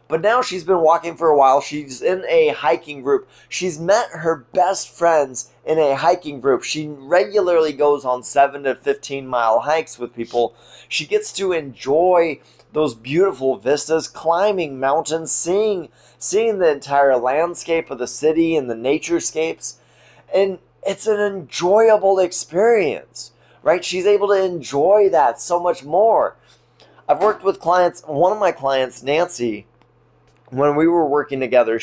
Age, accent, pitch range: 20-39, American, 130-180 Hz